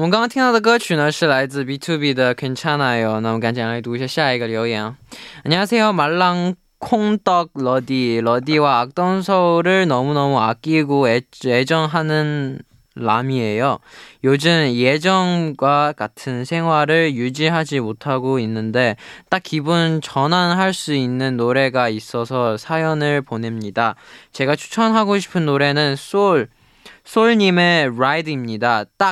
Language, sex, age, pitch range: Korean, male, 20-39, 125-165 Hz